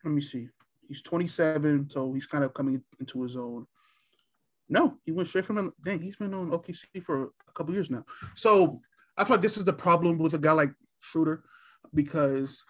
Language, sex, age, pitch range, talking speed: English, male, 20-39, 140-160 Hz, 200 wpm